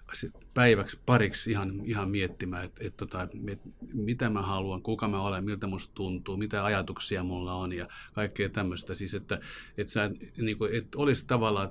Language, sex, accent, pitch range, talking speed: Finnish, male, native, 95-115 Hz, 165 wpm